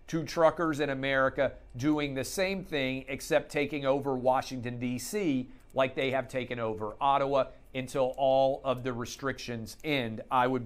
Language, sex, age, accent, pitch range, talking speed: English, male, 40-59, American, 130-160 Hz, 150 wpm